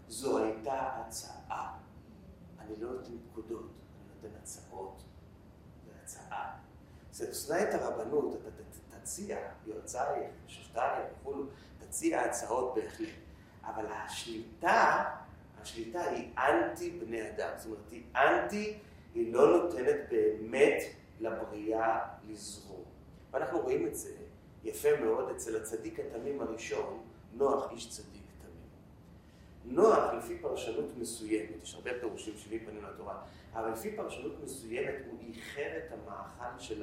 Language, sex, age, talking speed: Hebrew, male, 40-59, 110 wpm